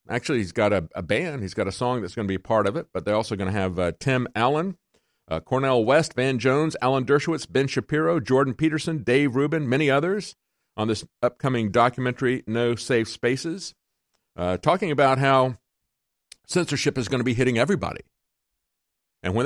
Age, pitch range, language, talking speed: 50-69, 95-135 Hz, English, 190 wpm